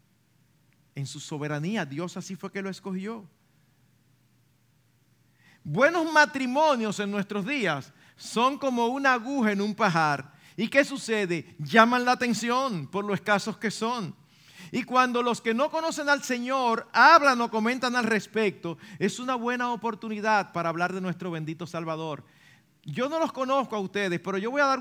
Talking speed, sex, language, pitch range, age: 160 wpm, male, Spanish, 160-235 Hz, 50-69